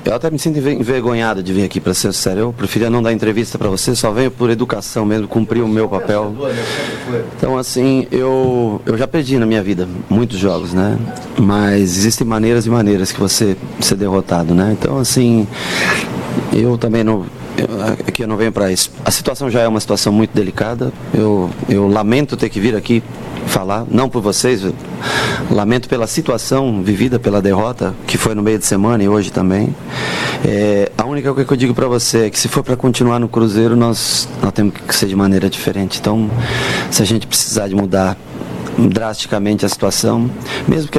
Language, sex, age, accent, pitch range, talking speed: Portuguese, male, 30-49, Brazilian, 100-120 Hz, 195 wpm